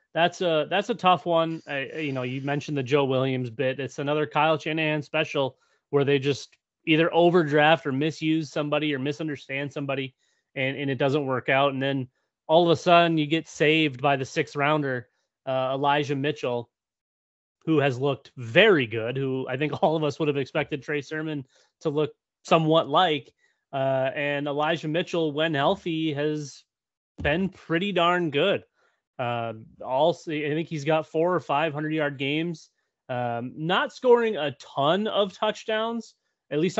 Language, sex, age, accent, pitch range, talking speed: English, male, 30-49, American, 140-165 Hz, 170 wpm